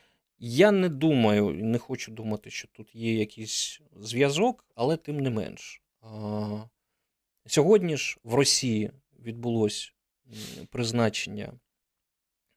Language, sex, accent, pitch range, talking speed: Ukrainian, male, native, 110-140 Hz, 100 wpm